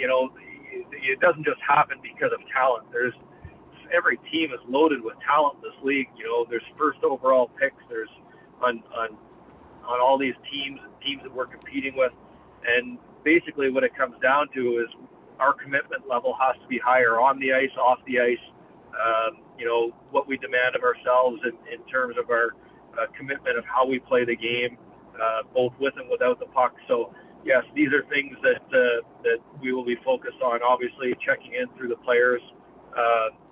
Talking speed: 190 wpm